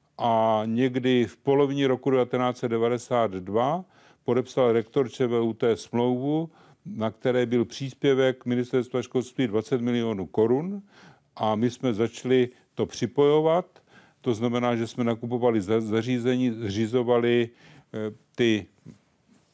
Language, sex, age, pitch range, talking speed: Czech, male, 40-59, 110-130 Hz, 100 wpm